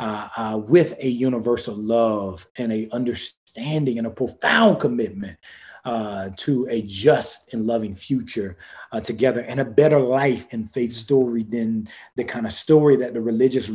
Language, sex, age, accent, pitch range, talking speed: English, male, 30-49, American, 115-145 Hz, 160 wpm